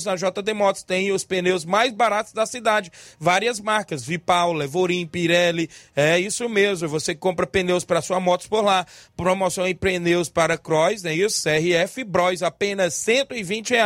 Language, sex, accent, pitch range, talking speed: Portuguese, male, Brazilian, 180-220 Hz, 165 wpm